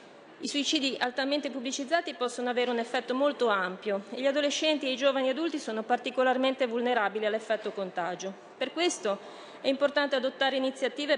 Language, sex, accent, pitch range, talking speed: Italian, female, native, 220-275 Hz, 150 wpm